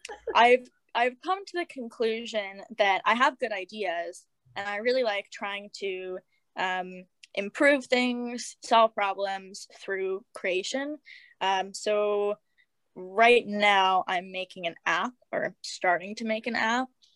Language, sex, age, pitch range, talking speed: English, female, 10-29, 190-235 Hz, 135 wpm